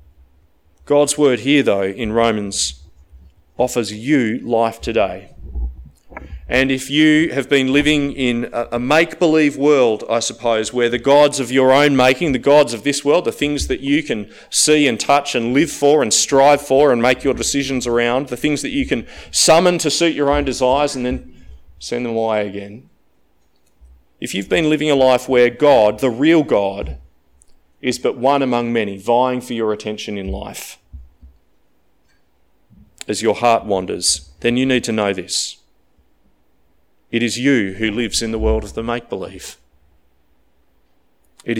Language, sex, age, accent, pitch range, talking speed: English, male, 30-49, Australian, 95-140 Hz, 165 wpm